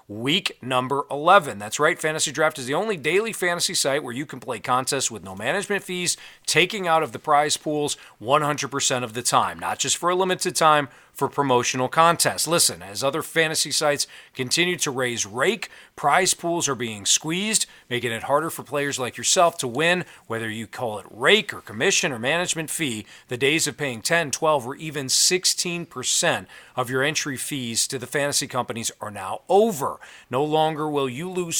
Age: 40-59